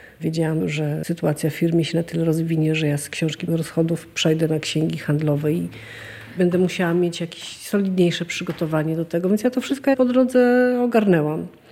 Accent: native